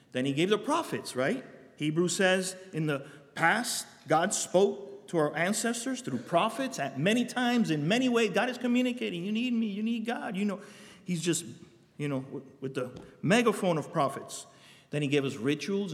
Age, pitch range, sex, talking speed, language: 50-69, 125-185 Hz, male, 185 wpm, English